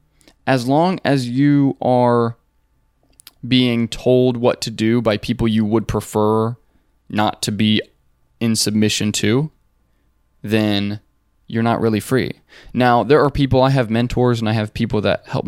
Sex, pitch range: male, 105-120 Hz